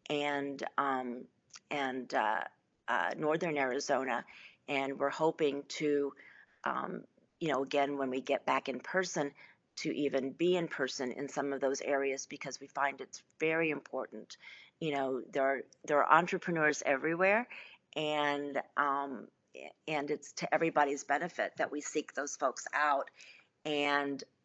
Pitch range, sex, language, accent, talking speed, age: 145-165 Hz, female, English, American, 145 wpm, 40-59